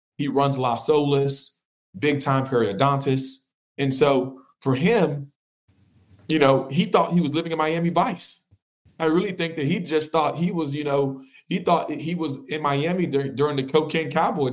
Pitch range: 135-165 Hz